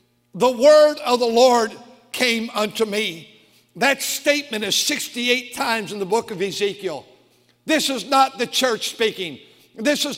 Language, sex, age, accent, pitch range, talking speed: English, male, 60-79, American, 215-270 Hz, 155 wpm